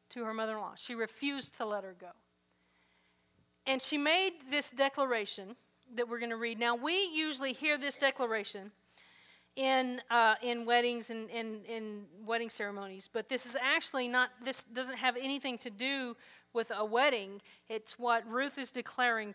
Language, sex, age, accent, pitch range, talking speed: English, female, 40-59, American, 215-270 Hz, 170 wpm